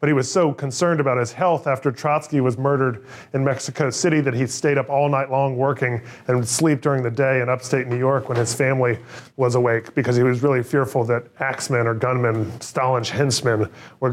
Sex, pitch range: male, 130-150 Hz